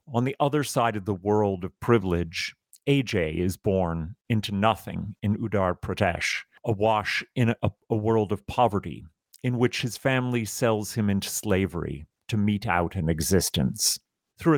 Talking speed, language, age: 155 wpm, English, 50-69